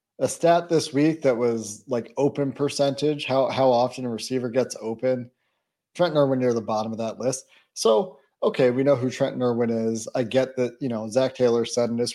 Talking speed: 205 wpm